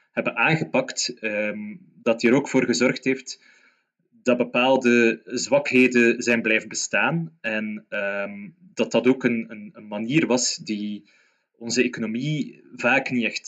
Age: 20-39